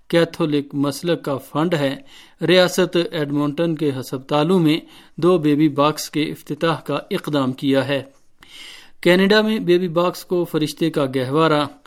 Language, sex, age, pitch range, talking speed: Urdu, male, 50-69, 145-175 Hz, 135 wpm